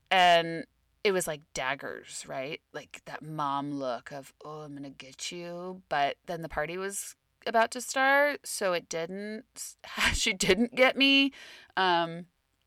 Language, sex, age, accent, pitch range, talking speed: English, female, 30-49, American, 165-205 Hz, 155 wpm